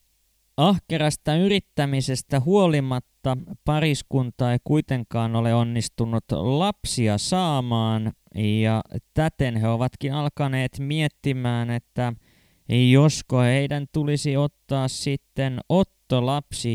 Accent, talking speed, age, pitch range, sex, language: native, 80 wpm, 20-39, 115-145 Hz, male, Finnish